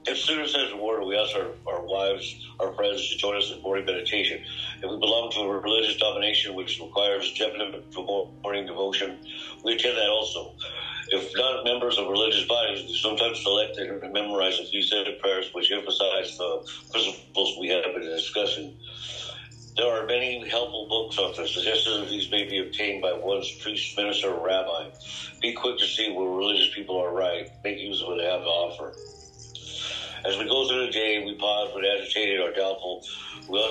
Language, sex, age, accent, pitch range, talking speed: English, male, 60-79, American, 100-120 Hz, 195 wpm